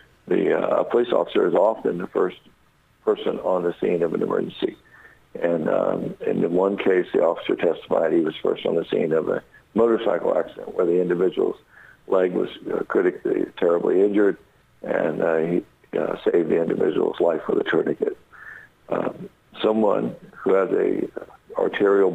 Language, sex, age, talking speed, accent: English, male, 60-79, 160 wpm, American